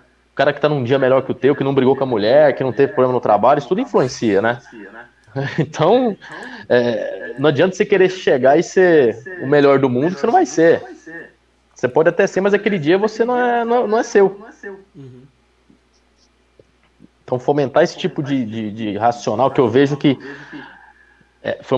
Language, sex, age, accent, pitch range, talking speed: Portuguese, male, 20-39, Brazilian, 130-200 Hz, 180 wpm